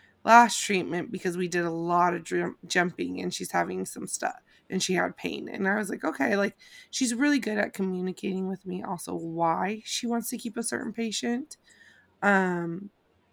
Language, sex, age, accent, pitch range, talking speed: English, female, 20-39, American, 180-215 Hz, 185 wpm